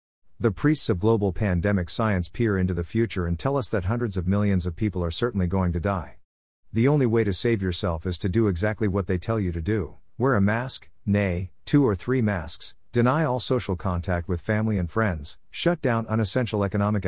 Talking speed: 210 wpm